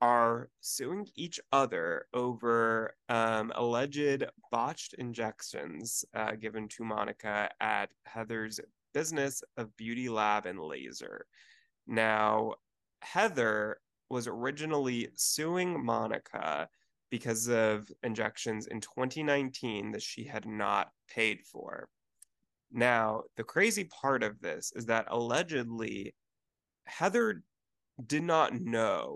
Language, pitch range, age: English, 110-140 Hz, 20-39